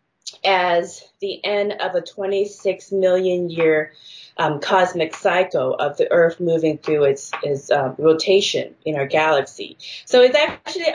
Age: 20-39